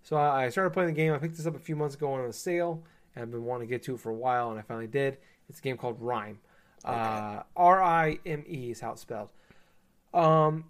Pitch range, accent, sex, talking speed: 120-175 Hz, American, male, 265 wpm